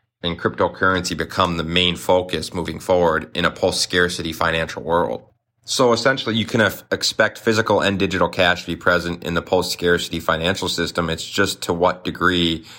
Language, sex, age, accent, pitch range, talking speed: English, male, 30-49, American, 85-100 Hz, 170 wpm